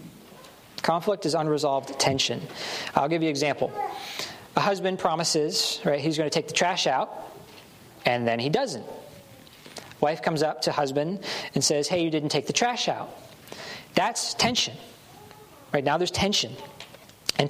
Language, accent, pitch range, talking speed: English, American, 145-195 Hz, 155 wpm